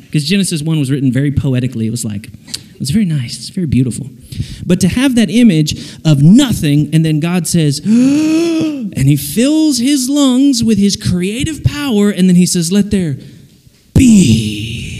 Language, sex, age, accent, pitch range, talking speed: English, male, 30-49, American, 140-220 Hz, 170 wpm